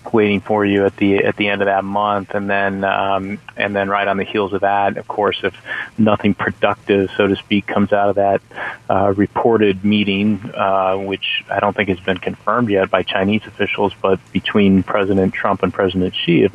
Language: English